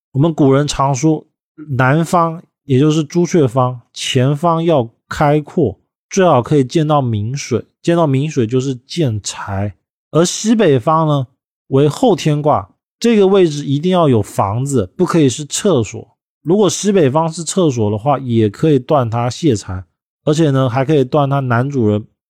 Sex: male